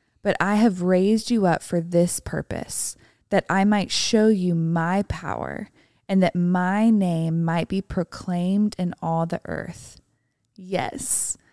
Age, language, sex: 20-39, English, female